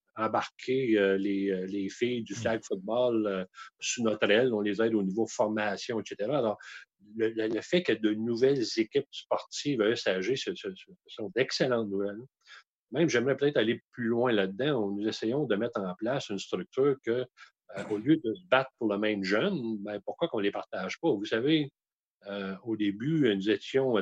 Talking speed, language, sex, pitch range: 185 wpm, French, male, 105-135 Hz